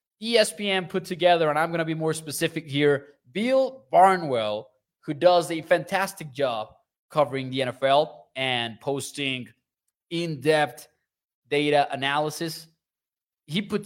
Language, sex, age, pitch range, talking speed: English, male, 20-39, 150-190 Hz, 120 wpm